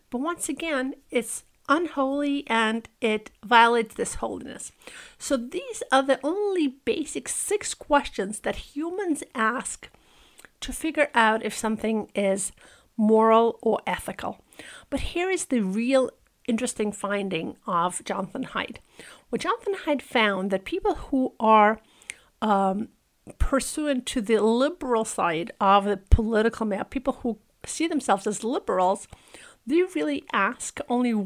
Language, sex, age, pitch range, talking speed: English, female, 50-69, 215-285 Hz, 130 wpm